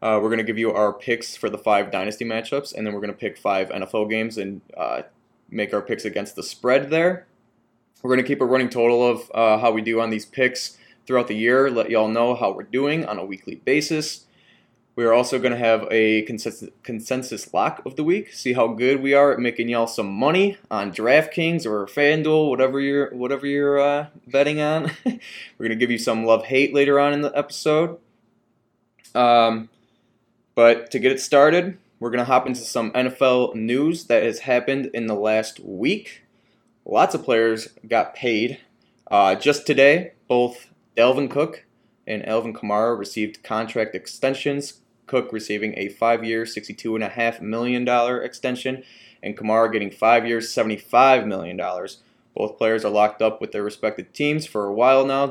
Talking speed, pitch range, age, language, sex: 180 wpm, 110-135 Hz, 20-39, English, male